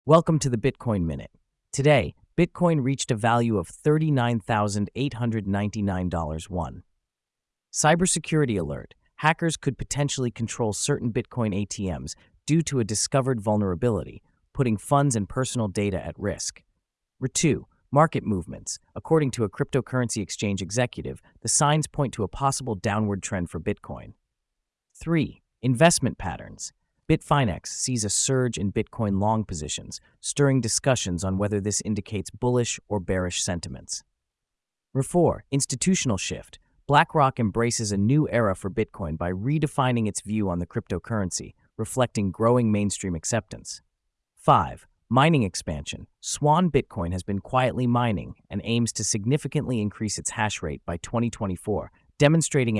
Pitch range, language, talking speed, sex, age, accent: 95-135 Hz, English, 130 wpm, male, 30-49, American